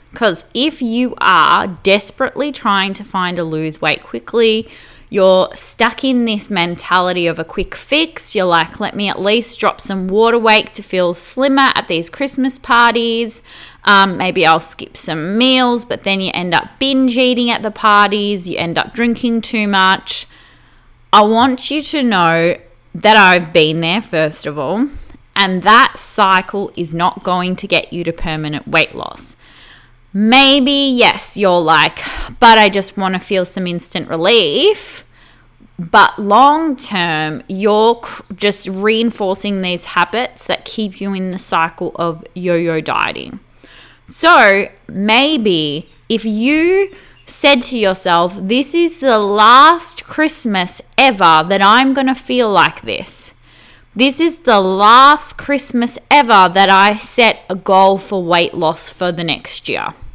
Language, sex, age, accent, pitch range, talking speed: English, female, 20-39, Australian, 180-245 Hz, 150 wpm